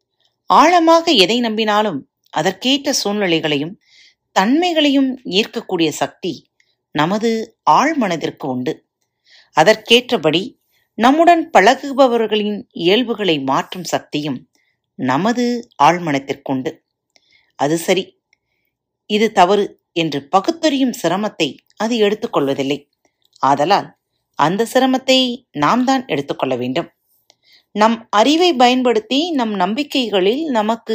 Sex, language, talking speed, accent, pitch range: female, Tamil, 80 wpm, native, 160-255 Hz